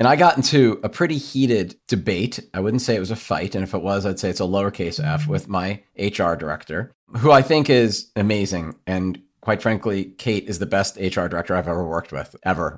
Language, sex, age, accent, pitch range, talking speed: English, male, 40-59, American, 90-120 Hz, 225 wpm